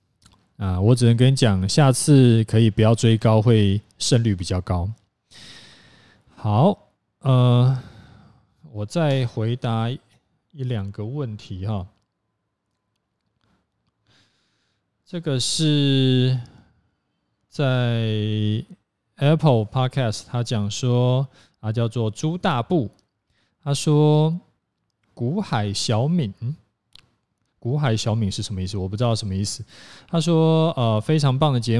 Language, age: Chinese, 20-39